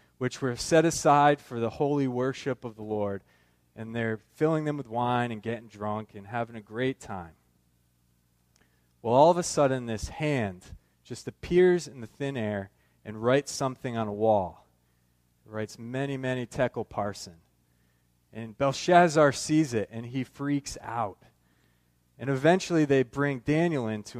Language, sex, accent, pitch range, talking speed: English, male, American, 95-145 Hz, 160 wpm